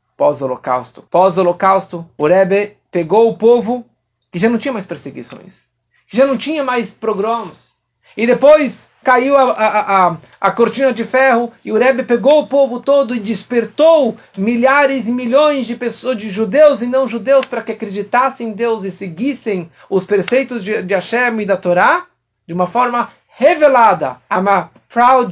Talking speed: 160 wpm